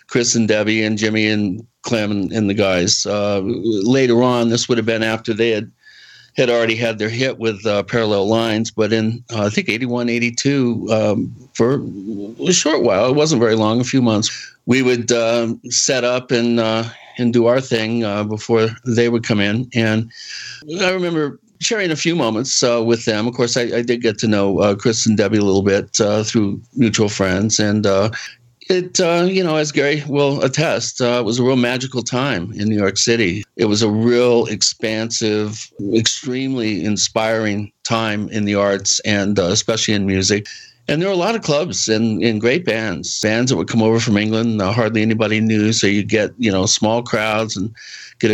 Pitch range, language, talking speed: 105-120 Hz, English, 200 wpm